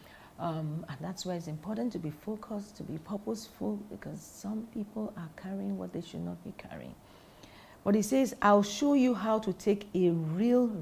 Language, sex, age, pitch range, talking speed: English, female, 50-69, 155-215 Hz, 190 wpm